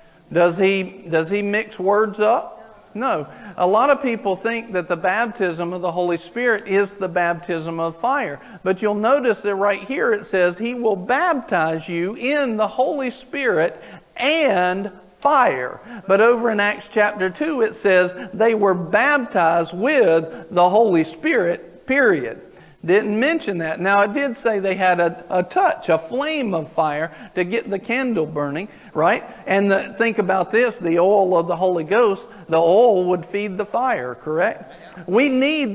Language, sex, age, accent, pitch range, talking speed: English, male, 50-69, American, 180-230 Hz, 170 wpm